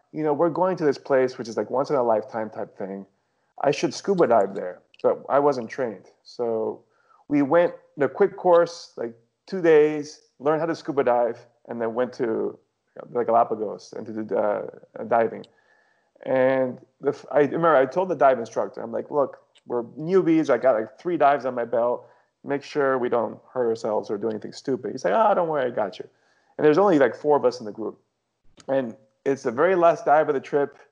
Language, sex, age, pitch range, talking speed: English, male, 30-49, 120-170 Hz, 215 wpm